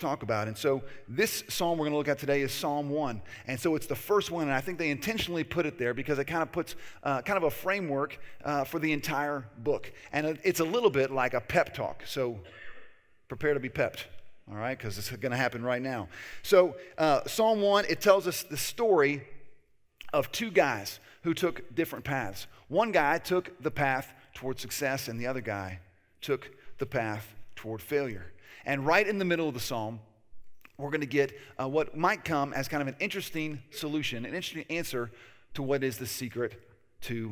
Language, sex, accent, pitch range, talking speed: English, male, American, 120-155 Hz, 210 wpm